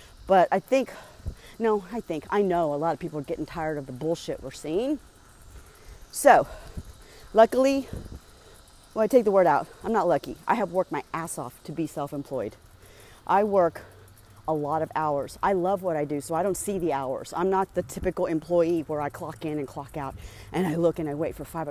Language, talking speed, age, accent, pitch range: English, 215 wpm, 40-59, American, 150-210 Hz